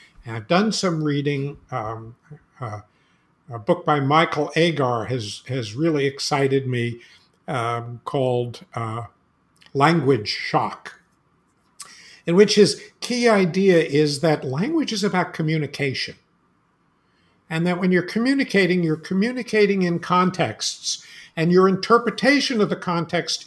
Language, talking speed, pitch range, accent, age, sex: English, 120 wpm, 145-200 Hz, American, 60-79, male